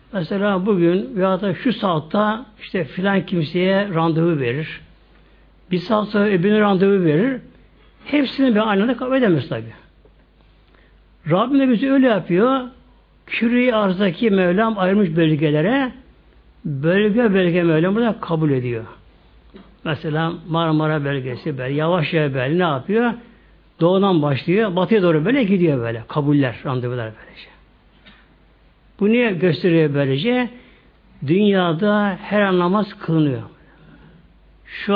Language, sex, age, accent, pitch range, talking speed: Turkish, male, 60-79, native, 155-220 Hz, 115 wpm